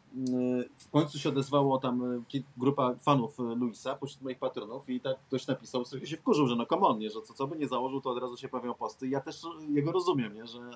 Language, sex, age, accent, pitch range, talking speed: Polish, male, 30-49, native, 120-145 Hz, 225 wpm